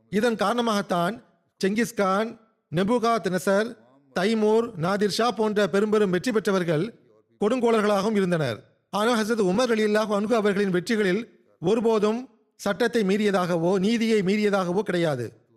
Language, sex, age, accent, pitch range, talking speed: Tamil, male, 40-59, native, 175-220 Hz, 95 wpm